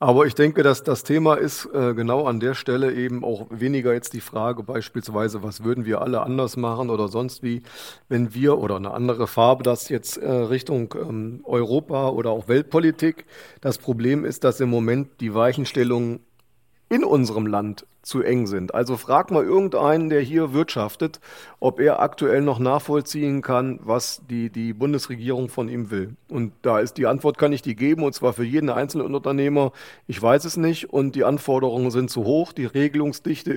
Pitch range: 120-145 Hz